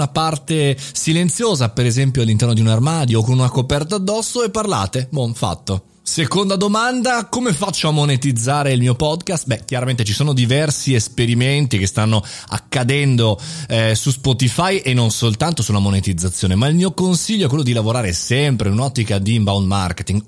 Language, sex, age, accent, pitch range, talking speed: Italian, male, 30-49, native, 110-150 Hz, 165 wpm